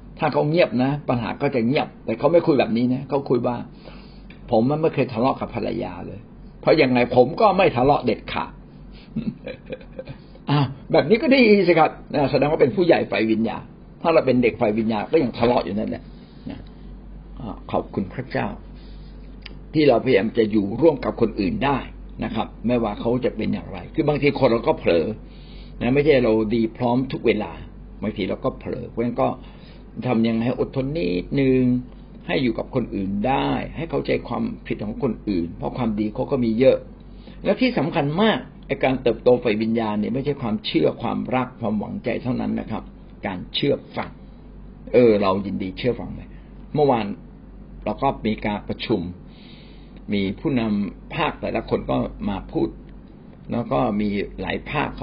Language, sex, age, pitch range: Thai, male, 60-79, 110-140 Hz